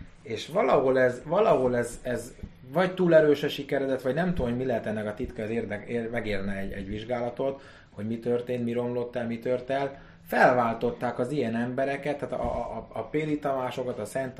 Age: 30-49